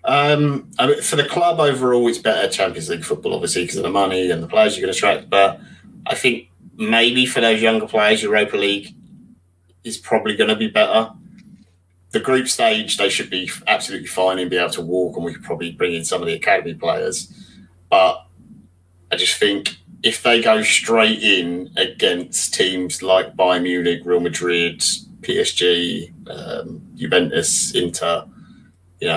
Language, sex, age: English, male, 20-39